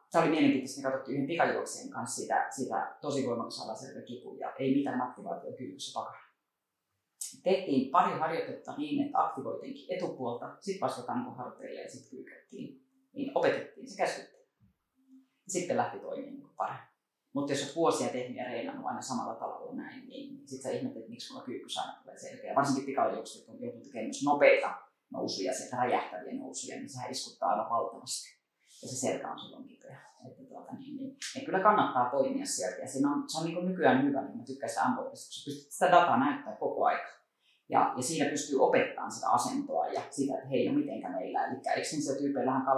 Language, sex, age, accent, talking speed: Finnish, female, 30-49, native, 160 wpm